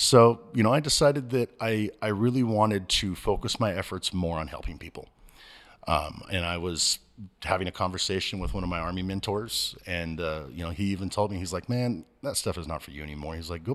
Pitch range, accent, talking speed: 85-105 Hz, American, 225 wpm